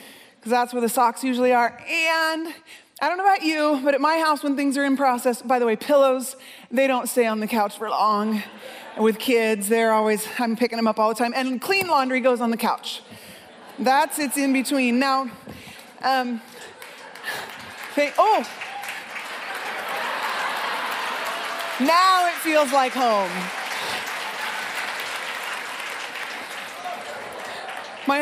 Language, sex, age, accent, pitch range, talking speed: English, female, 30-49, American, 230-300 Hz, 135 wpm